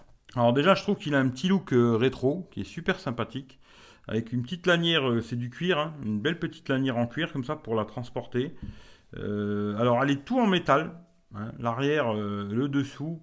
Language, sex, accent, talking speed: French, male, French, 215 wpm